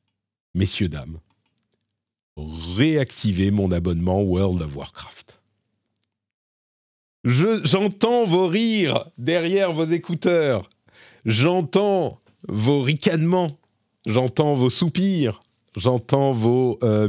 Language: French